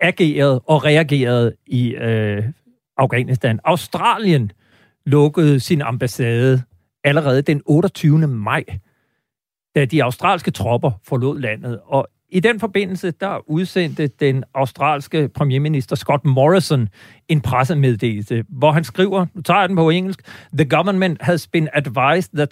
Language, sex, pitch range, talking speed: Danish, male, 130-175 Hz, 130 wpm